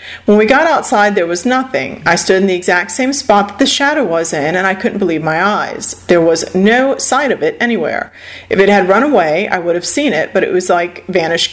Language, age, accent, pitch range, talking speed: English, 40-59, American, 175-215 Hz, 245 wpm